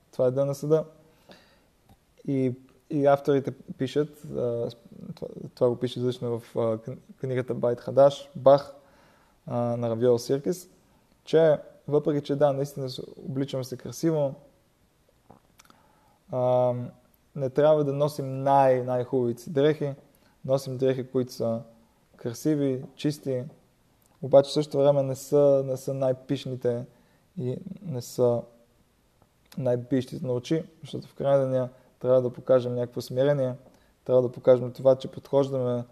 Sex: male